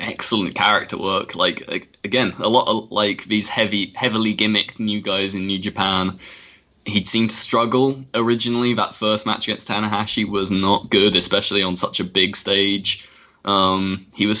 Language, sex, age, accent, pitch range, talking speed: English, male, 10-29, British, 95-110 Hz, 165 wpm